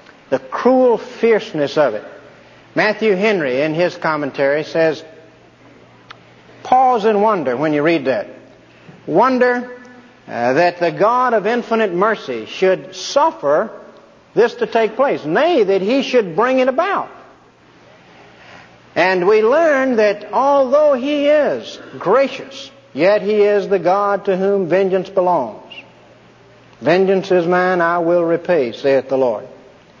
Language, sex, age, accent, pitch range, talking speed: English, male, 60-79, American, 180-235 Hz, 130 wpm